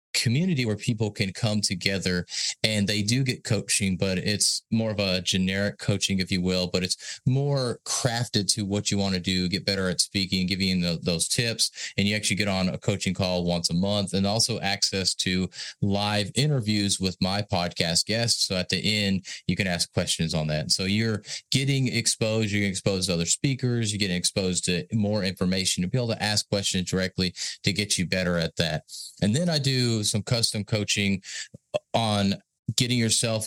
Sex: male